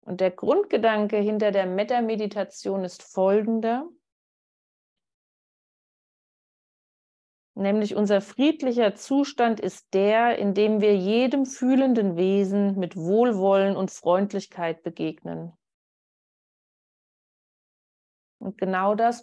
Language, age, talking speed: German, 30-49, 85 wpm